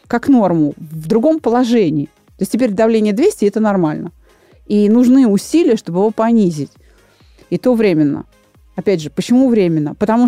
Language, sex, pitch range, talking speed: Russian, female, 185-245 Hz, 150 wpm